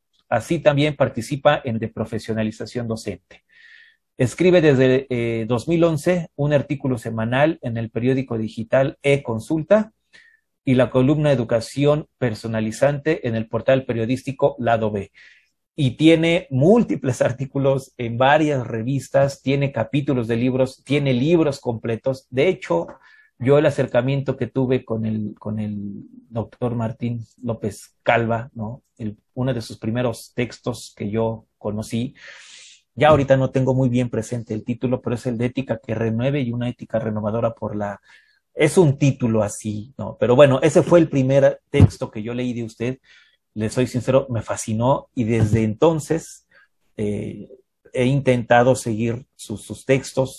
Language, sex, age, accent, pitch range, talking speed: Spanish, male, 40-59, Mexican, 115-140 Hz, 145 wpm